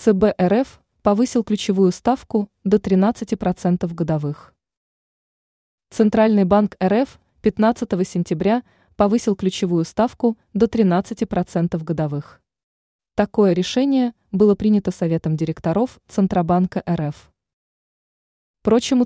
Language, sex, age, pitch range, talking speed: Russian, female, 20-39, 175-220 Hz, 90 wpm